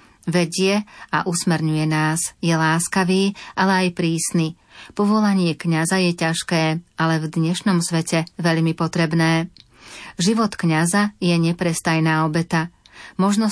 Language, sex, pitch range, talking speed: Slovak, female, 160-180 Hz, 110 wpm